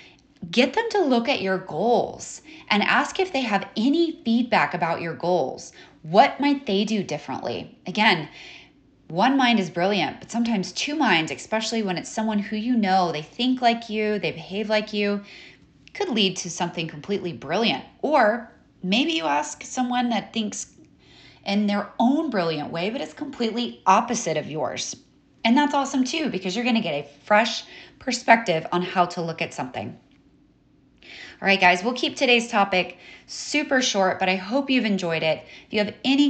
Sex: female